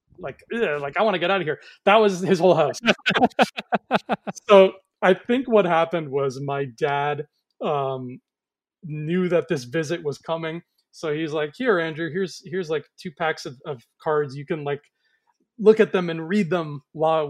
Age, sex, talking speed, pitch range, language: 30-49, male, 180 wpm, 150-190 Hz, English